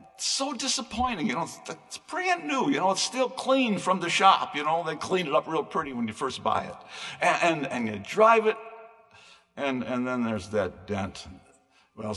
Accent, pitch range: American, 155-245 Hz